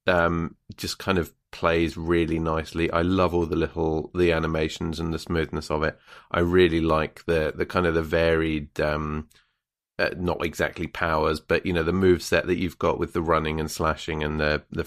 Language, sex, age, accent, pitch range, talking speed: English, male, 30-49, British, 80-90 Hz, 200 wpm